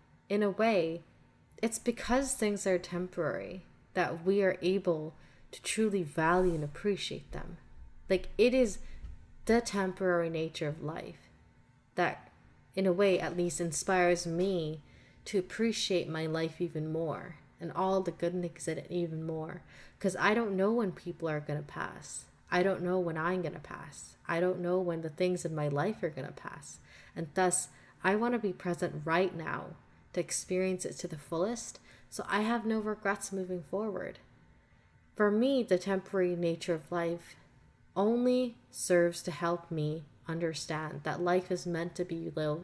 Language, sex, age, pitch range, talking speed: English, female, 20-39, 165-195 Hz, 170 wpm